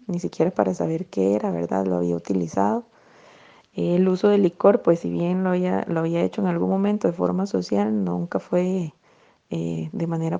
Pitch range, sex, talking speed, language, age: 155-200 Hz, female, 190 wpm, Spanish, 30-49